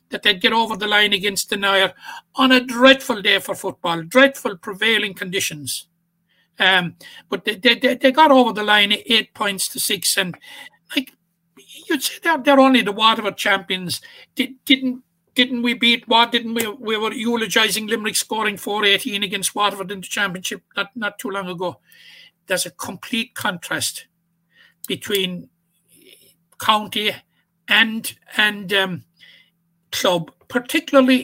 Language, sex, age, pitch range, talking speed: English, male, 60-79, 190-250 Hz, 145 wpm